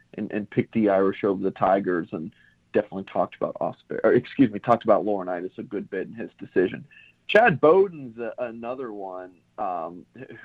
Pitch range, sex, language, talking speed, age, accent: 95-125 Hz, male, English, 180 wpm, 40-59, American